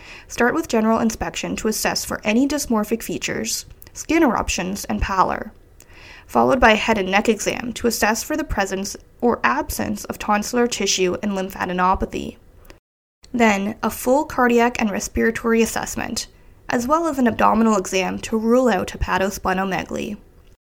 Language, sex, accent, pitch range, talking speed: English, female, American, 205-250 Hz, 145 wpm